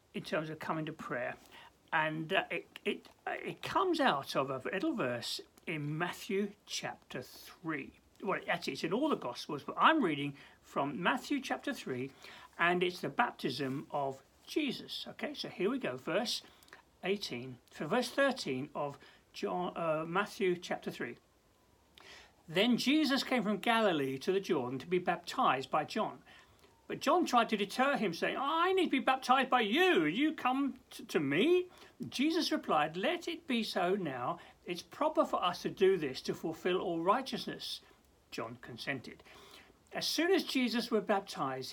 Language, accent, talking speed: English, British, 165 wpm